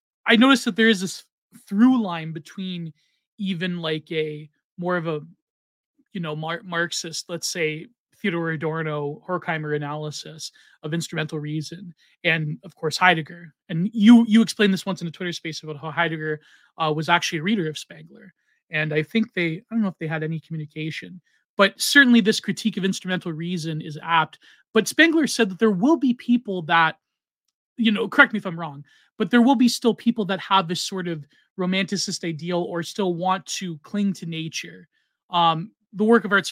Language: English